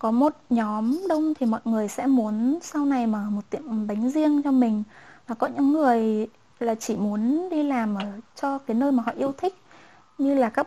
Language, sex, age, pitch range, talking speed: Vietnamese, female, 20-39, 225-275 Hz, 215 wpm